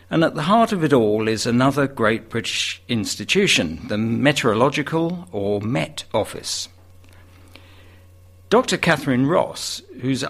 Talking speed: 120 wpm